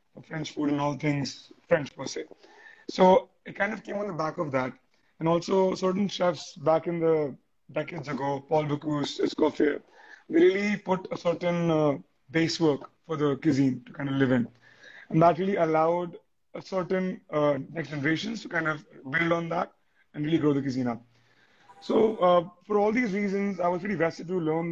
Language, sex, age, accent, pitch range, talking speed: English, male, 30-49, Indian, 145-185 Hz, 190 wpm